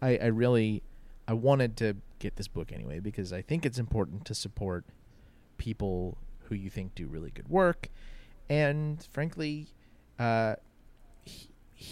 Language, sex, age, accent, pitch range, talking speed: English, male, 30-49, American, 95-115 Hz, 140 wpm